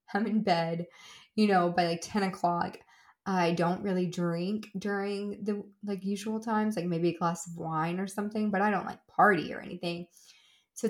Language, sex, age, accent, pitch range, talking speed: English, female, 20-39, American, 170-210 Hz, 185 wpm